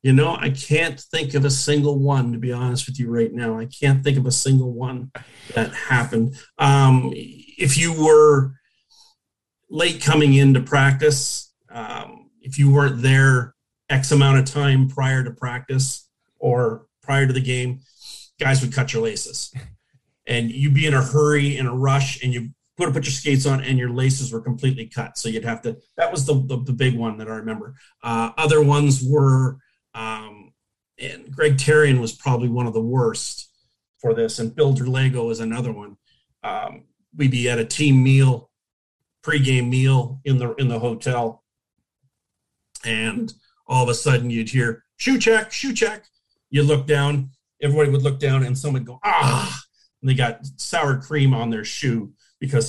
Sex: male